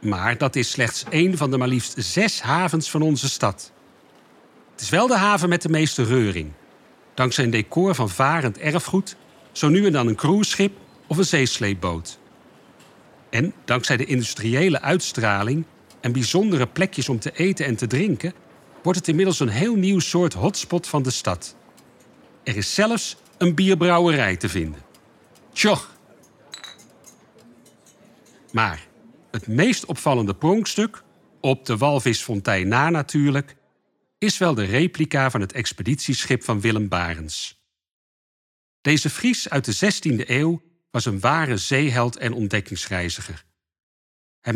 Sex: male